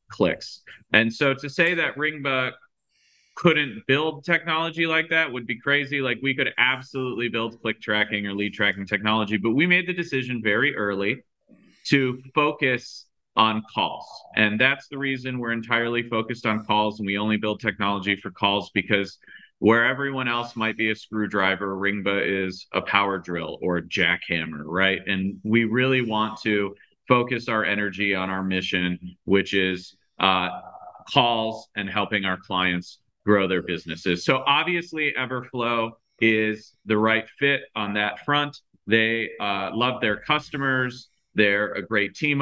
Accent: American